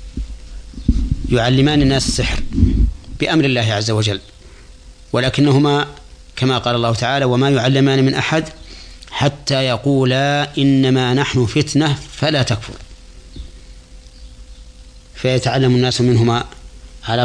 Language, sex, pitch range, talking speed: Arabic, male, 85-130 Hz, 95 wpm